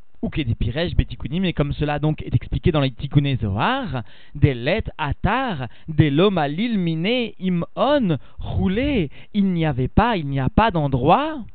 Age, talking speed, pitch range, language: 40-59, 160 wpm, 145-200 Hz, French